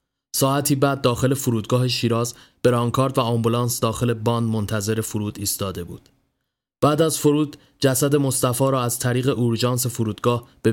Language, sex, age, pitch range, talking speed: Persian, male, 30-49, 115-135 Hz, 140 wpm